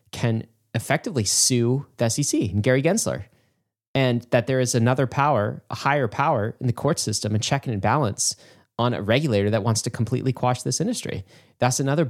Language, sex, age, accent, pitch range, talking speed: English, male, 20-39, American, 115-145 Hz, 185 wpm